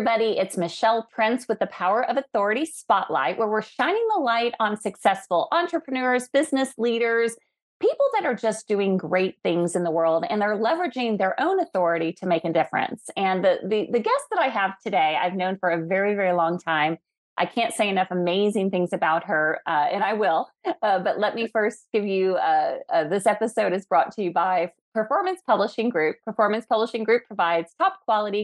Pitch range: 180-235 Hz